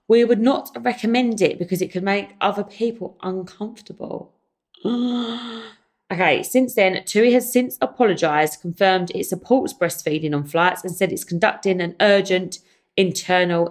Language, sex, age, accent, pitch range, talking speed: English, female, 20-39, British, 155-210 Hz, 140 wpm